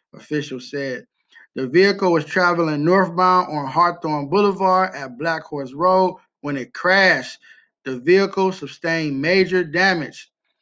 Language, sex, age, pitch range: English, male, 20-39, 150-180 Hz